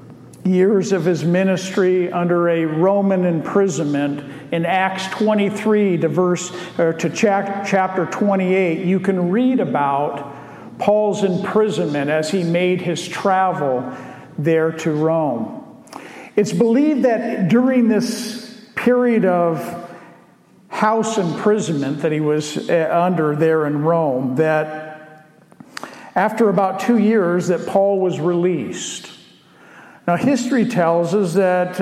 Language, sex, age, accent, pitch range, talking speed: English, male, 50-69, American, 160-205 Hz, 115 wpm